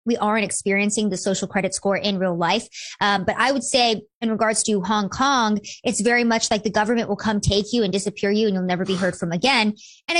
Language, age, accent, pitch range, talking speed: English, 20-39, American, 210-260 Hz, 240 wpm